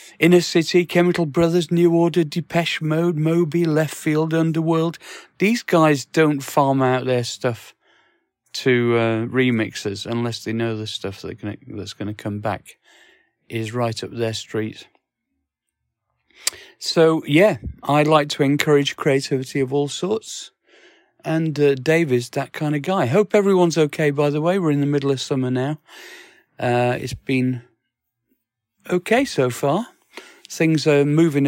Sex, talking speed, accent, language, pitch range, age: male, 145 wpm, British, English, 125-155 Hz, 40-59